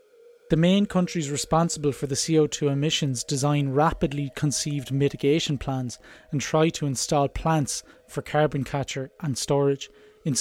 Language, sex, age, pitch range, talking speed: English, male, 20-39, 140-165 Hz, 140 wpm